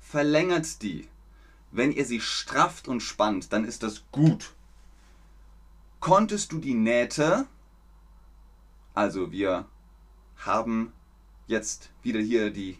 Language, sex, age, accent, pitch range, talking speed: German, male, 30-49, German, 115-175 Hz, 110 wpm